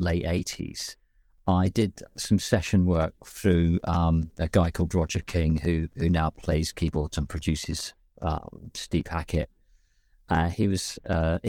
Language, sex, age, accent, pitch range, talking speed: English, male, 50-69, British, 85-100 Hz, 145 wpm